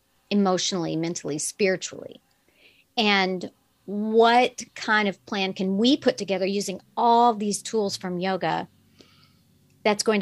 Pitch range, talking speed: 180-215 Hz, 115 wpm